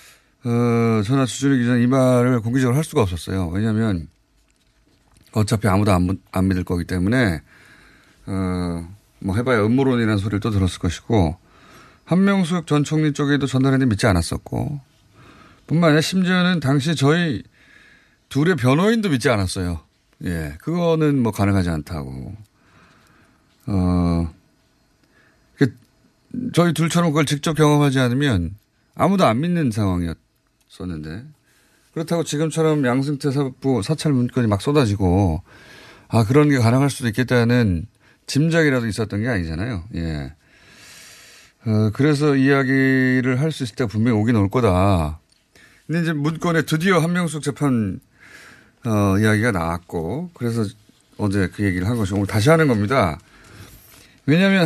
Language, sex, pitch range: Korean, male, 100-150 Hz